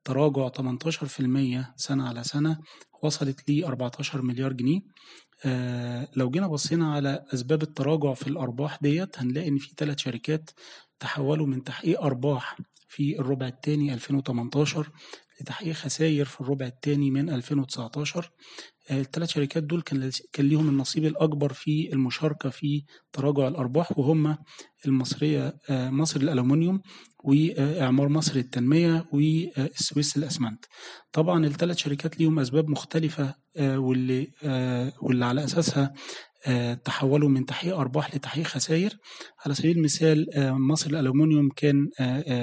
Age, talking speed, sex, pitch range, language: 30-49, 120 wpm, male, 130-150 Hz, Arabic